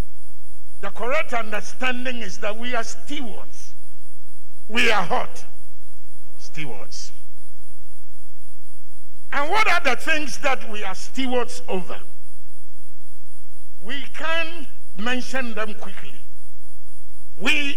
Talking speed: 95 wpm